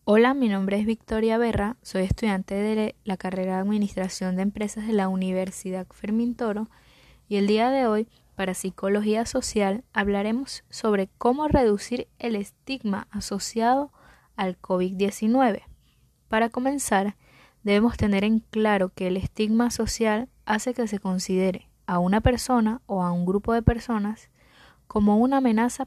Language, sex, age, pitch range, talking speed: Spanish, female, 10-29, 190-235 Hz, 145 wpm